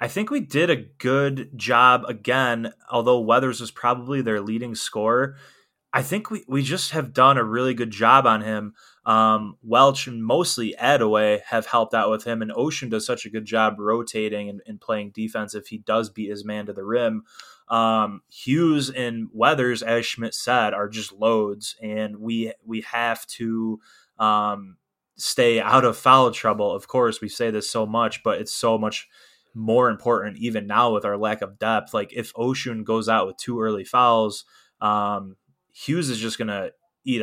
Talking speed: 185 wpm